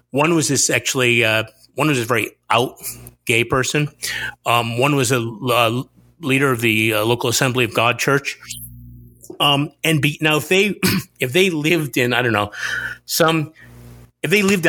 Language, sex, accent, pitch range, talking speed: English, male, American, 120-175 Hz, 175 wpm